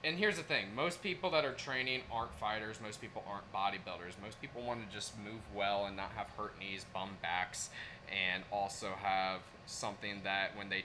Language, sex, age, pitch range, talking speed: English, male, 20-39, 110-135 Hz, 200 wpm